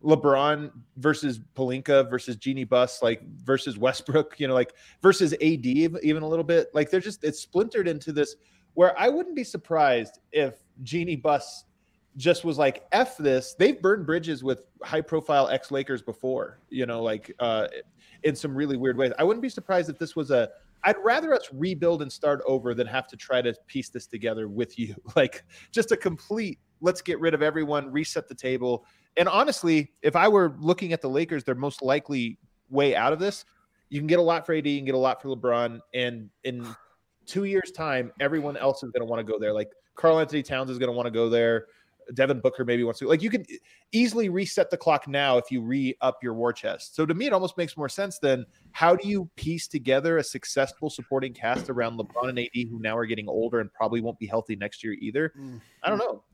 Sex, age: male, 30-49